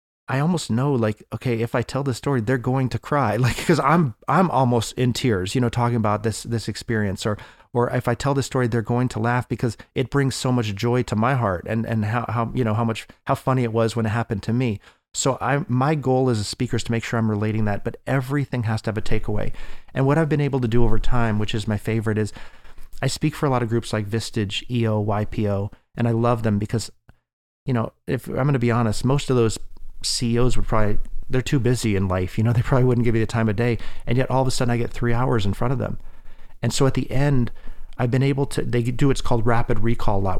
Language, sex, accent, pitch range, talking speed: English, male, American, 110-130 Hz, 265 wpm